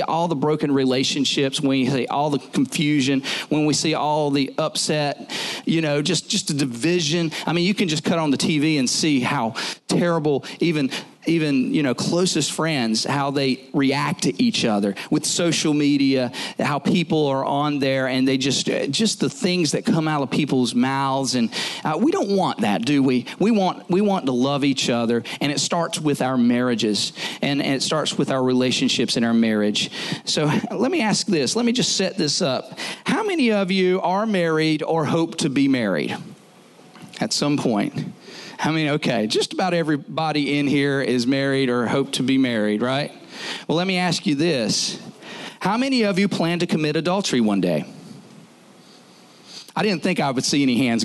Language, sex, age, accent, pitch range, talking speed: English, male, 40-59, American, 135-180 Hz, 195 wpm